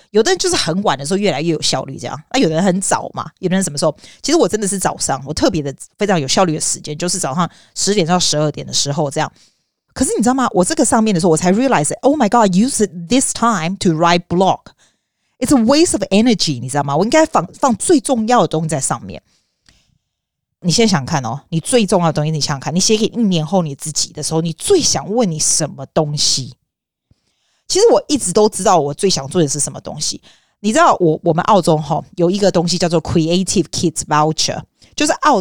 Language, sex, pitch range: Chinese, female, 155-220 Hz